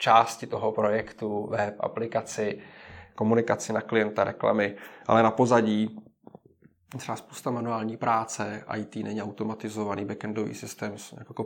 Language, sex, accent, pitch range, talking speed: Czech, male, native, 105-115 Hz, 115 wpm